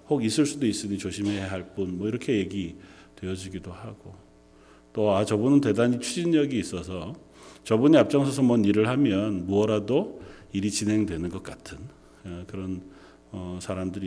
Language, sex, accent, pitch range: Korean, male, native, 95-130 Hz